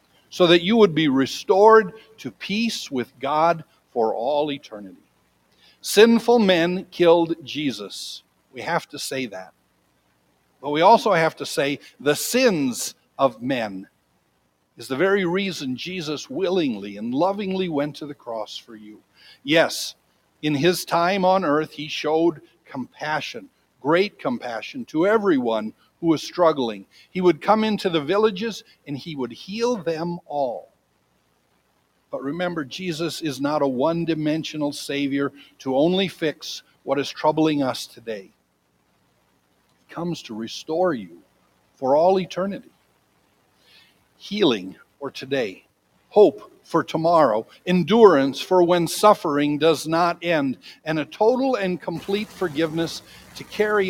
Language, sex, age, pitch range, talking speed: English, male, 60-79, 140-195 Hz, 135 wpm